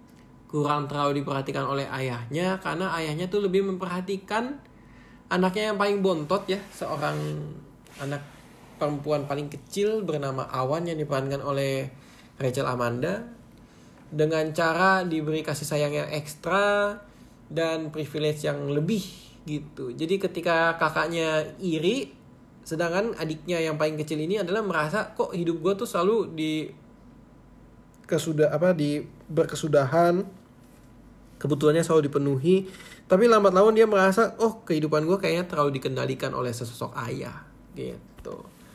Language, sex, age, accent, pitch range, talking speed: Indonesian, male, 20-39, native, 145-190 Hz, 120 wpm